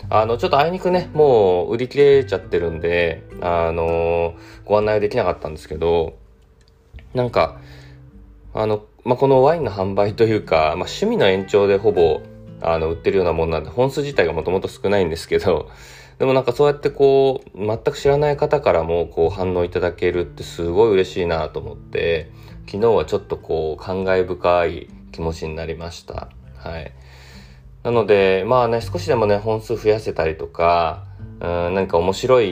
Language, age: Japanese, 20-39